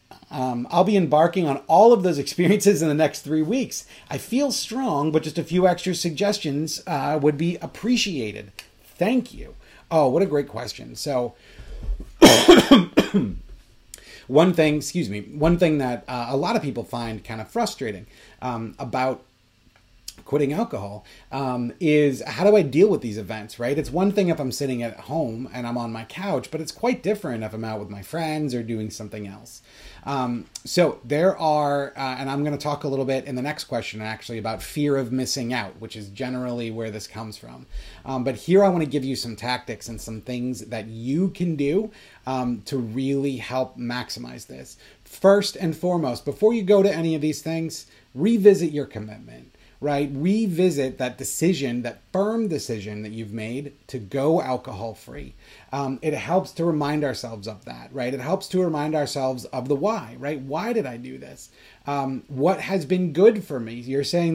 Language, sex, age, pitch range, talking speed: English, male, 30-49, 120-170 Hz, 190 wpm